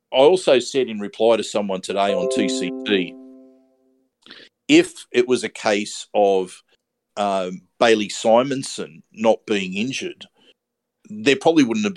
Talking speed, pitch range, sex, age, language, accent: 130 wpm, 105-130 Hz, male, 50-69, English, Australian